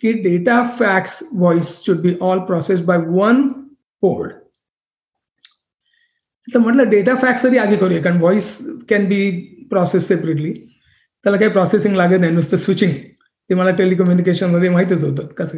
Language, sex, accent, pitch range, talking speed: Marathi, male, native, 185-245 Hz, 140 wpm